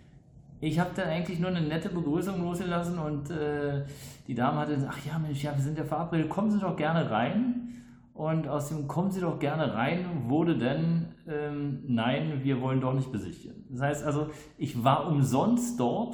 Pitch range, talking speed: 125-160 Hz, 195 wpm